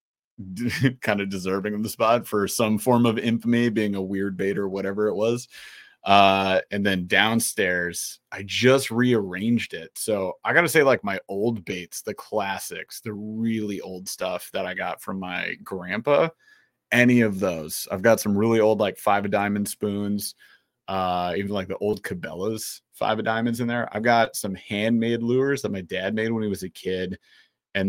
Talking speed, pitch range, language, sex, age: 185 wpm, 95-115 Hz, English, male, 30-49